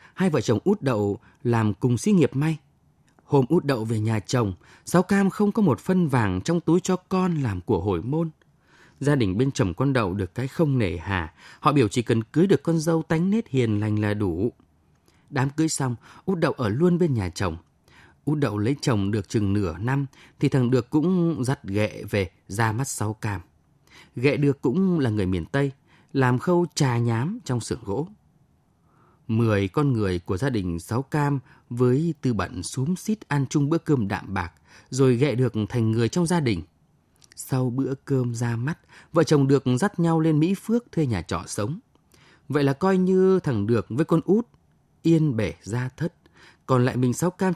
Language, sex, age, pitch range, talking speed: Vietnamese, male, 20-39, 105-160 Hz, 205 wpm